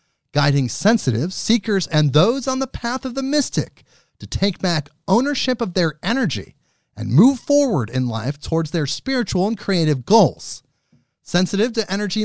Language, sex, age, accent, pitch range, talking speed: English, male, 30-49, American, 140-210 Hz, 155 wpm